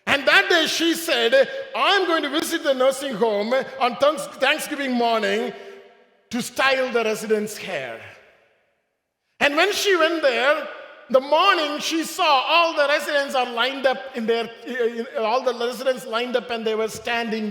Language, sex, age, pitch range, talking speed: English, male, 50-69, 205-295 Hz, 145 wpm